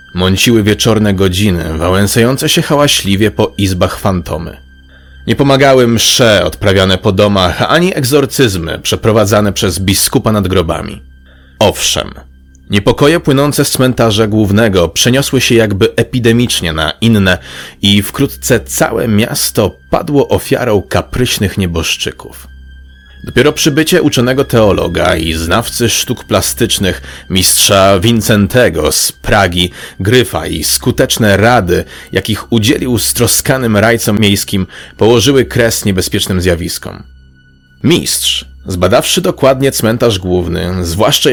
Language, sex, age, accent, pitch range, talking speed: Polish, male, 30-49, native, 90-120 Hz, 105 wpm